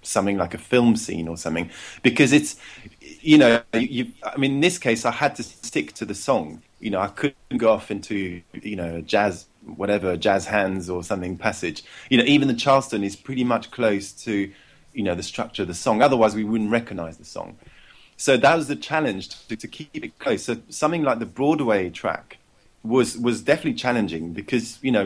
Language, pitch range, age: English, 100-125 Hz, 20-39